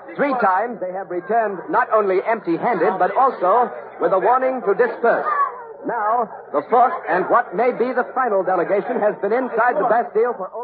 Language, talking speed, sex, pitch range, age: English, 175 wpm, male, 195-235 Hz, 50-69